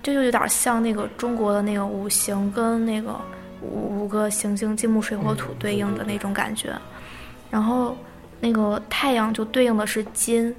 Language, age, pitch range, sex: Chinese, 20-39, 210-235 Hz, female